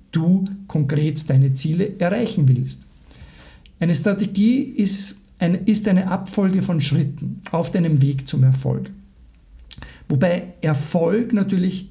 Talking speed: 105 wpm